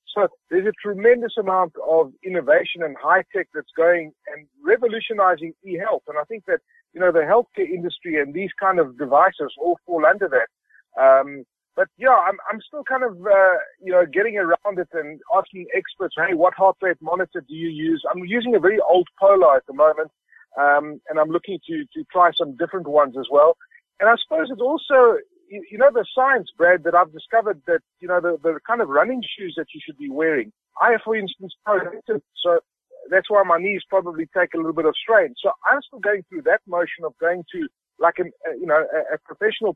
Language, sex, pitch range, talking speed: English, male, 165-260 Hz, 205 wpm